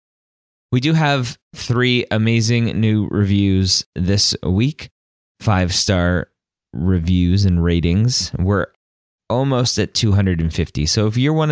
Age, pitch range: 20-39, 85-110 Hz